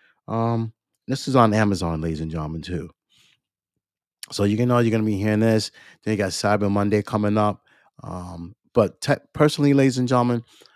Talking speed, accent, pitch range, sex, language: 175 wpm, American, 95-120 Hz, male, English